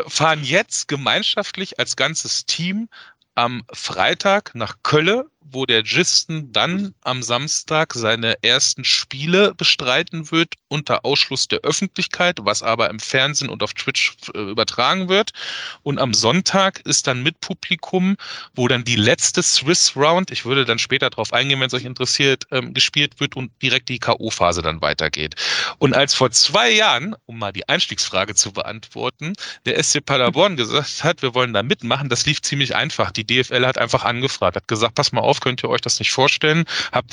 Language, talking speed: German, 170 wpm